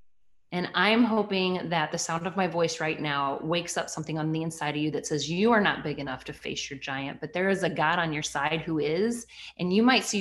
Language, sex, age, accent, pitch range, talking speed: English, female, 30-49, American, 170-230 Hz, 260 wpm